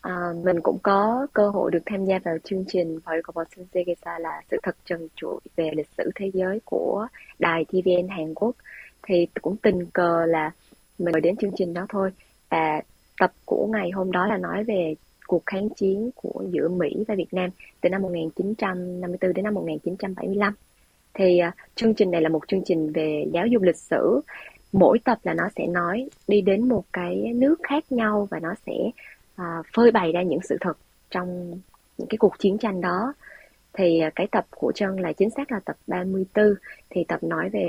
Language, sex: Vietnamese, female